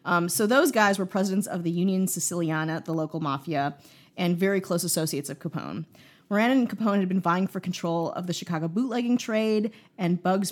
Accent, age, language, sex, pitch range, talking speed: American, 30-49, English, female, 160-195 Hz, 195 wpm